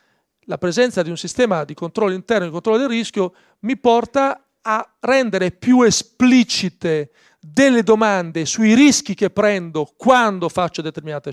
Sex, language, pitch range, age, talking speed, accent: male, Italian, 165-225 Hz, 40-59, 150 wpm, native